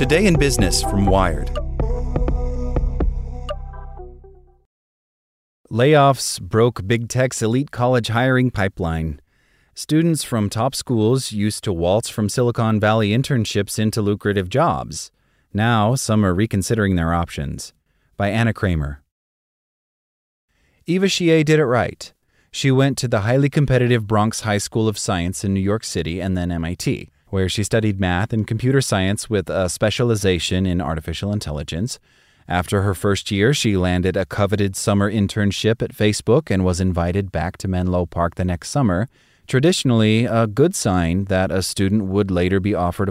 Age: 30-49